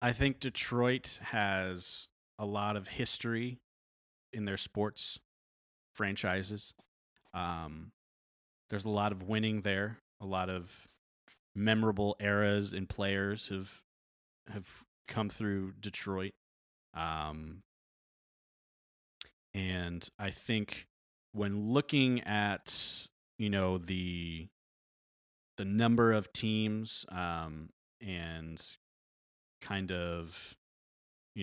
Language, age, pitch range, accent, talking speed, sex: English, 30-49, 85-105 Hz, American, 95 wpm, male